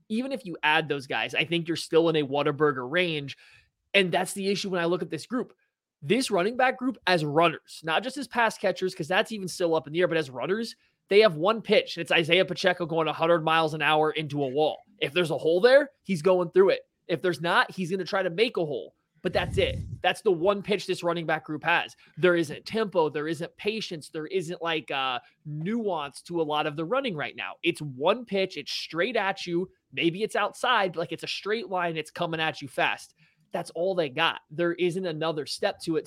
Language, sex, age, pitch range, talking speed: English, male, 20-39, 160-195 Hz, 235 wpm